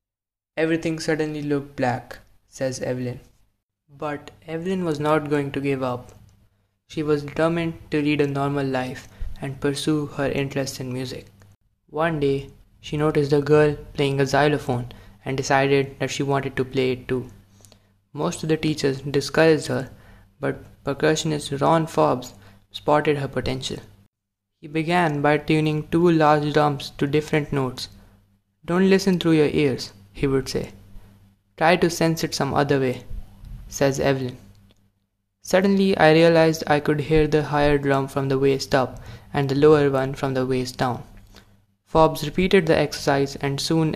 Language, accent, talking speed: English, Indian, 155 wpm